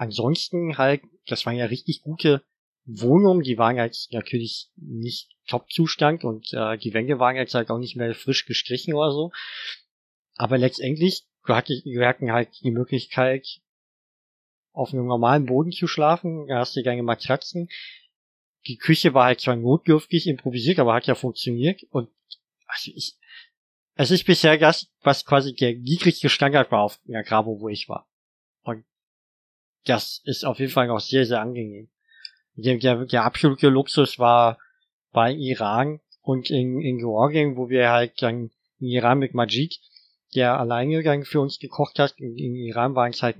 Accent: German